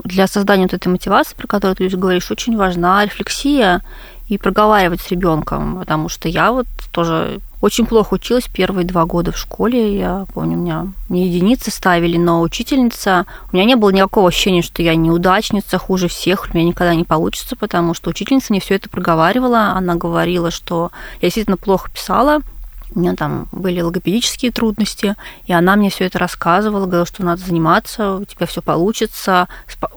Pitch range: 170-210 Hz